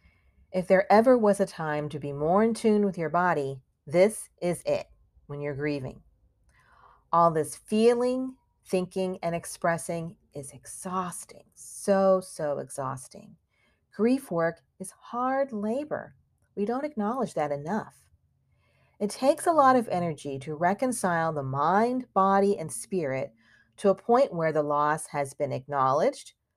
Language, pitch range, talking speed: English, 140-210 Hz, 140 wpm